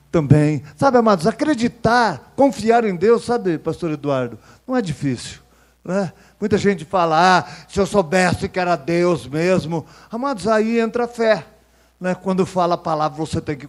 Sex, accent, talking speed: male, Brazilian, 165 wpm